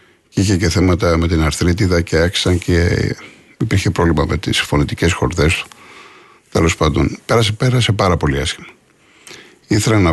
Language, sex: Greek, male